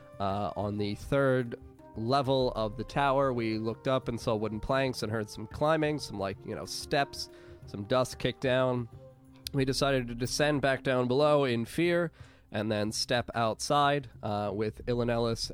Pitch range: 115-140 Hz